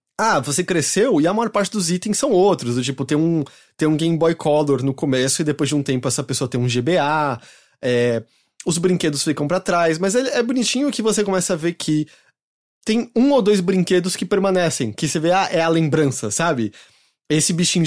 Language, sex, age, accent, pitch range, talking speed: English, male, 20-39, Brazilian, 140-185 Hz, 215 wpm